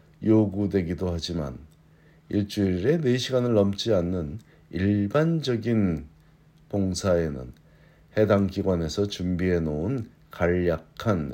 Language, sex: Korean, male